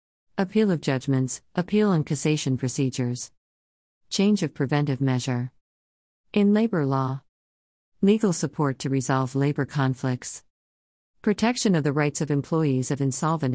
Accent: American